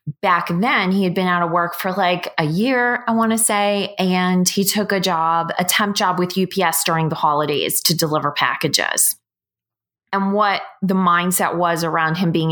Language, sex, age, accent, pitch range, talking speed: English, female, 20-39, American, 165-195 Hz, 190 wpm